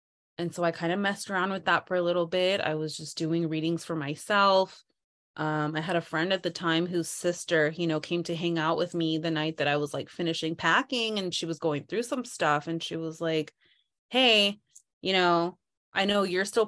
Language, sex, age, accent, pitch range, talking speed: English, female, 20-39, American, 165-215 Hz, 230 wpm